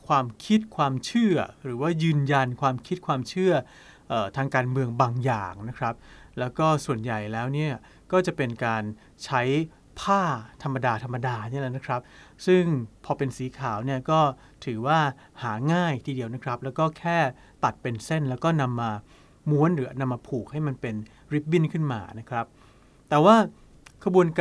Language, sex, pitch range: Thai, male, 120-155 Hz